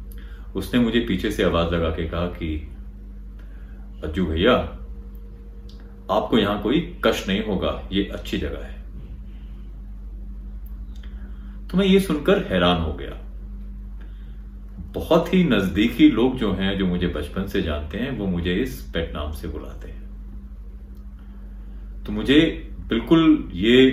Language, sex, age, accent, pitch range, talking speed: Hindi, male, 40-59, native, 70-100 Hz, 130 wpm